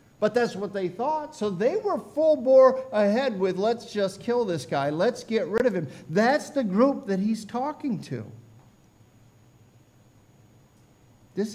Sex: male